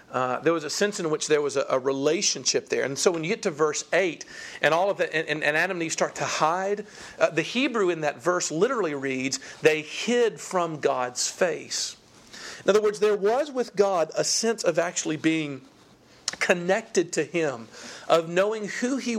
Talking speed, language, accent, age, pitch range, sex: 205 wpm, English, American, 50-69, 155-215 Hz, male